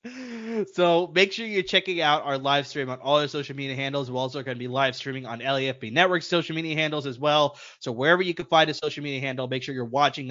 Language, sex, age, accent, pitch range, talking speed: English, male, 20-39, American, 130-170 Hz, 250 wpm